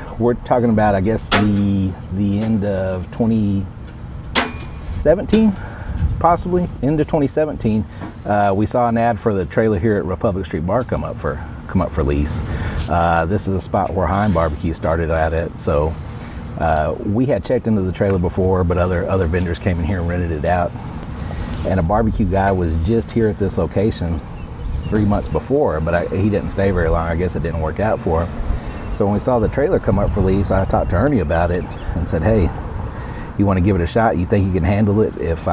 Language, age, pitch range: English, 40-59, 85-105 Hz